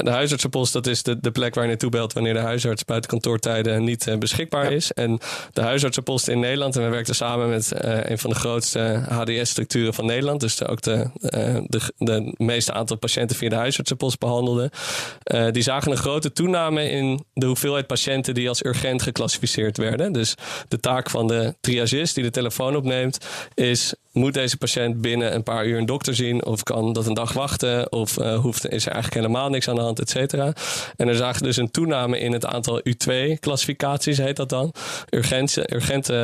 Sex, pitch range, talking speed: male, 115-135 Hz, 195 wpm